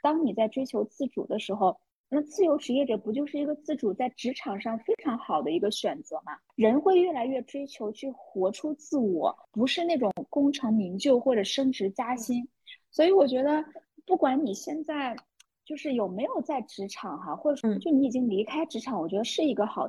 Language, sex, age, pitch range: Chinese, female, 20-39, 220-290 Hz